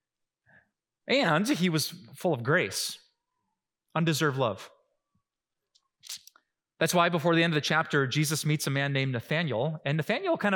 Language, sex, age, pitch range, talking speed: English, male, 30-49, 130-175 Hz, 140 wpm